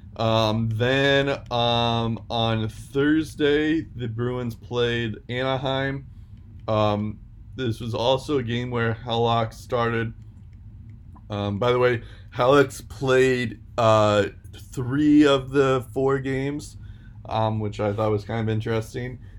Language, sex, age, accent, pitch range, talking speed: English, male, 20-39, American, 105-125 Hz, 120 wpm